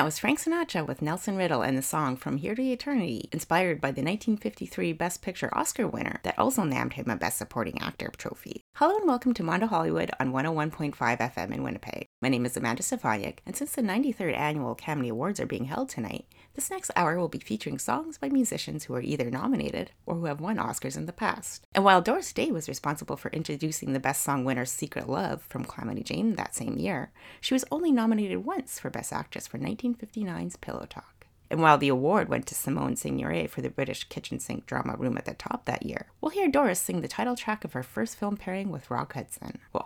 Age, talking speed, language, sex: 30-49, 220 wpm, English, female